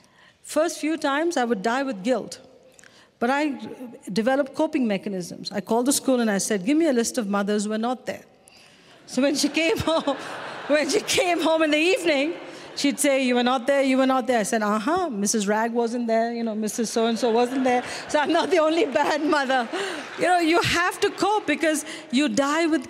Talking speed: 215 wpm